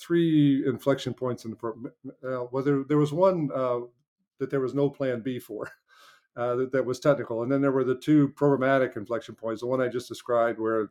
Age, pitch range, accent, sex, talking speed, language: 50-69, 115-135 Hz, American, male, 215 wpm, English